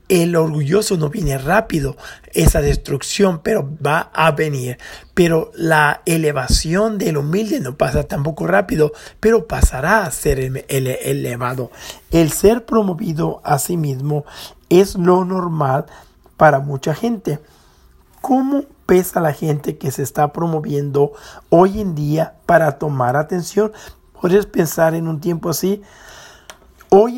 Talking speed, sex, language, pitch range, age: 130 wpm, male, English, 145-190 Hz, 50-69